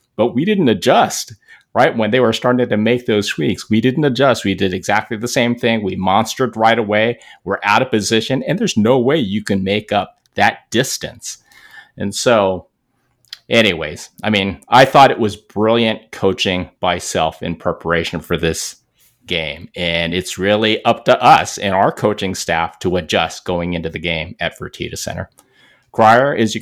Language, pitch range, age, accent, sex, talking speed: English, 95-115 Hz, 30-49, American, male, 180 wpm